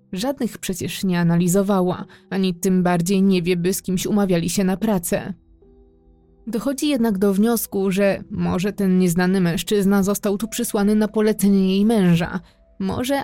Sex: female